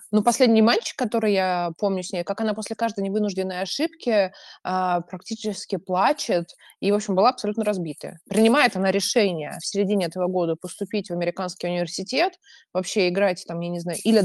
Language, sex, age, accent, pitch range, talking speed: Russian, female, 20-39, native, 180-225 Hz, 175 wpm